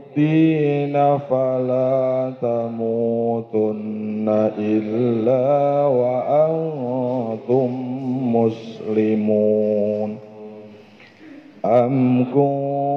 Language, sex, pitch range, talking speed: Malay, male, 125-145 Hz, 45 wpm